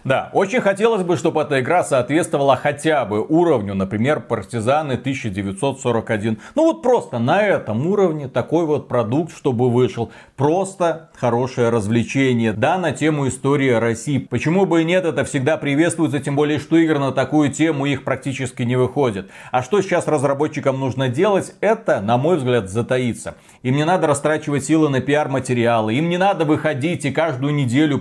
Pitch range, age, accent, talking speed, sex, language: 125-165 Hz, 30-49, native, 165 wpm, male, Russian